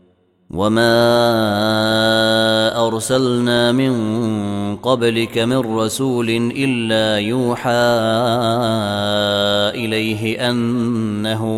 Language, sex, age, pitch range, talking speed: Arabic, male, 30-49, 100-120 Hz, 50 wpm